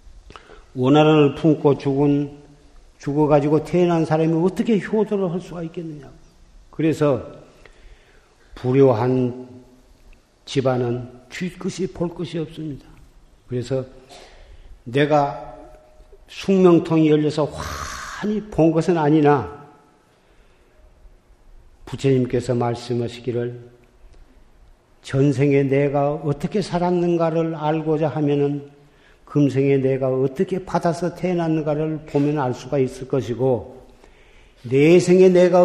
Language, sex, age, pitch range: Korean, male, 50-69, 130-175 Hz